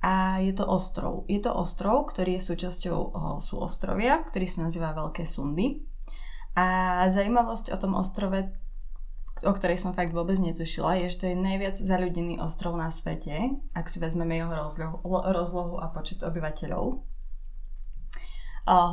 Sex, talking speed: female, 155 wpm